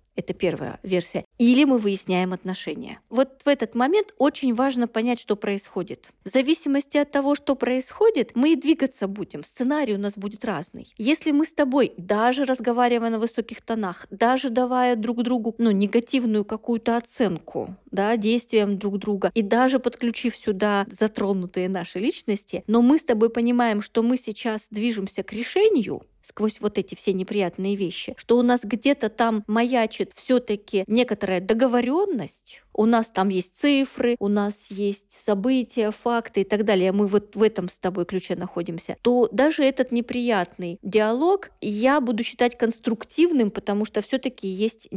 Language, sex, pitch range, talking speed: Russian, female, 200-250 Hz, 155 wpm